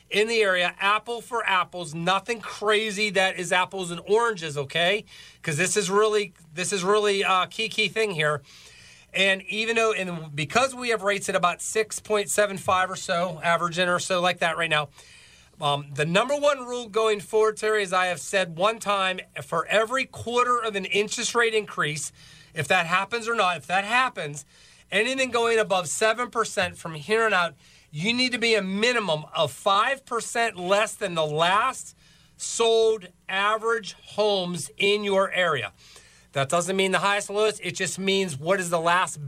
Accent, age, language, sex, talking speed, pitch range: American, 40-59, English, male, 175 wpm, 175-215 Hz